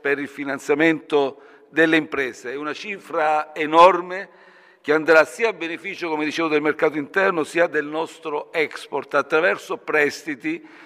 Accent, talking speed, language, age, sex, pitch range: native, 140 wpm, Italian, 60-79, male, 145-170 Hz